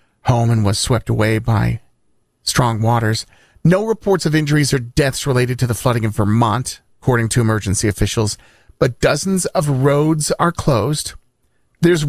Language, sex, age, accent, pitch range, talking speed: English, male, 40-59, American, 115-145 Hz, 155 wpm